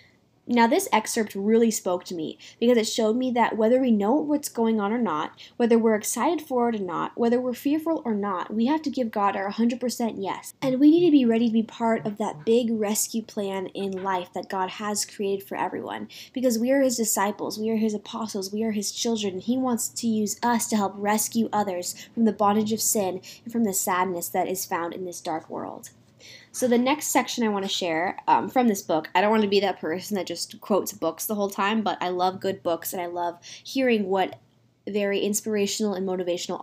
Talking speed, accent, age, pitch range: 230 wpm, American, 10-29, 190-240 Hz